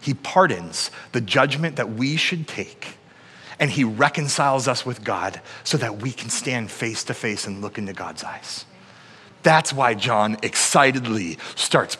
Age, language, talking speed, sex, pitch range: 30-49, English, 160 wpm, male, 120-165 Hz